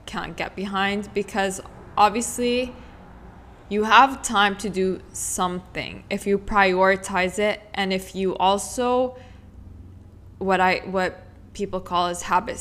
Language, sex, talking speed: English, female, 125 wpm